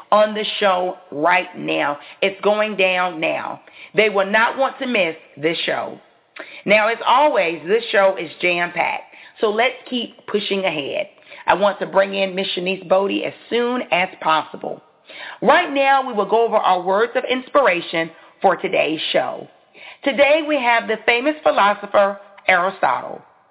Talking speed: 155 wpm